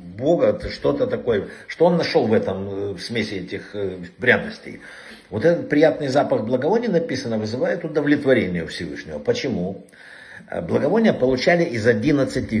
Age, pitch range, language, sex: 60-79, 105-155 Hz, Russian, male